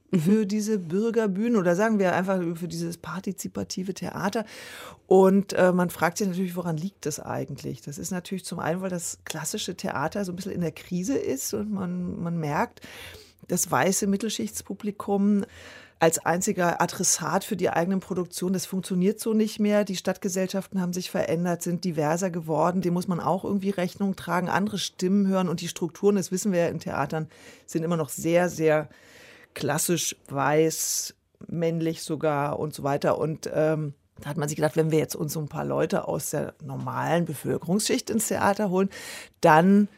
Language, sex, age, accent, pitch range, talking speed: German, female, 30-49, German, 160-195 Hz, 175 wpm